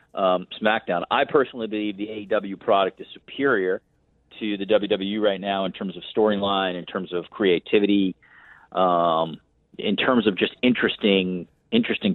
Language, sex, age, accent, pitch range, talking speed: English, male, 40-59, American, 95-115 Hz, 150 wpm